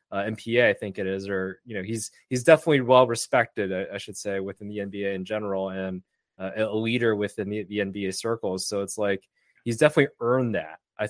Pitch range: 105-135 Hz